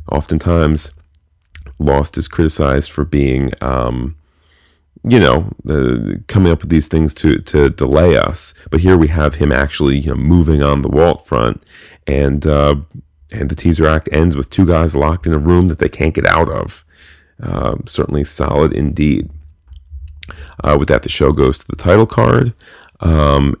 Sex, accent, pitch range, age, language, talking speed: male, American, 70-80 Hz, 40-59, English, 165 wpm